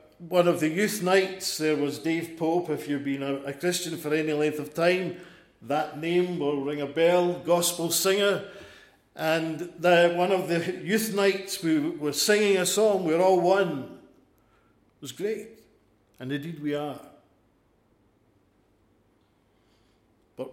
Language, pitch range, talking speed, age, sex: English, 115-180 Hz, 145 wpm, 50-69, male